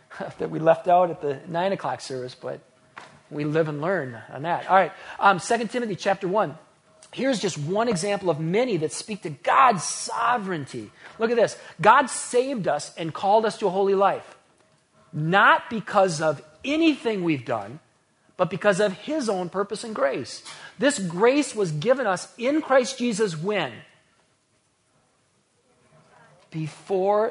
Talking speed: 160 wpm